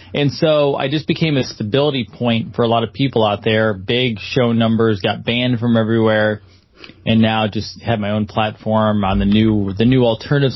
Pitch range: 105-130 Hz